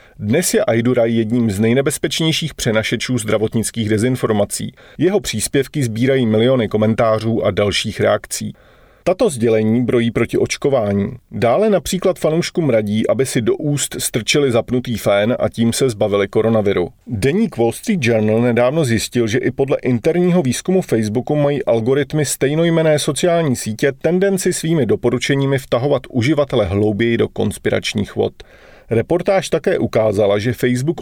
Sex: male